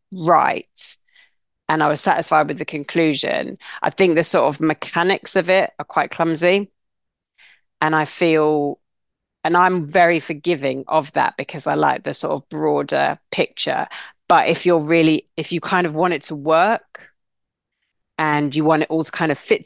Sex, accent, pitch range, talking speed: female, British, 145-170 Hz, 175 wpm